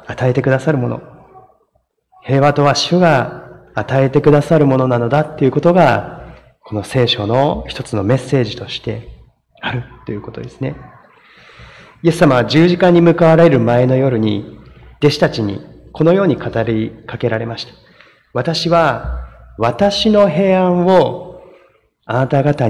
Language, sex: Japanese, male